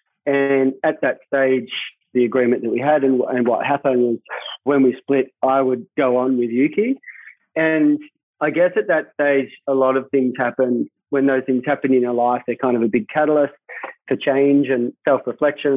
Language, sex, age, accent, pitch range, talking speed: English, male, 40-59, Australian, 130-145 Hz, 195 wpm